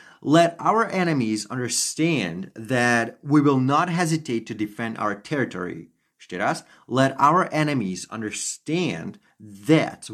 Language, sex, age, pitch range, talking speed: Slovak, male, 30-49, 110-140 Hz, 110 wpm